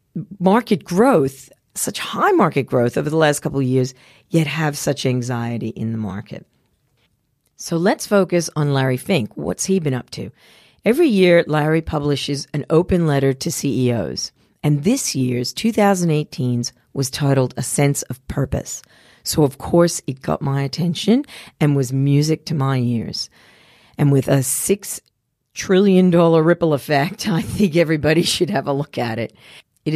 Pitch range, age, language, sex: 130-170 Hz, 40-59, English, female